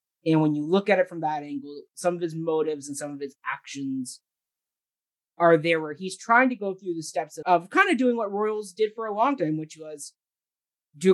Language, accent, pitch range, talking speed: English, American, 155-185 Hz, 230 wpm